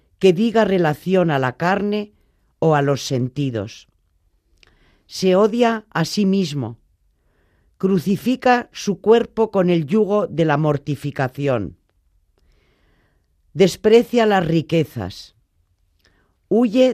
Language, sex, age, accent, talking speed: Spanish, female, 40-59, Spanish, 100 wpm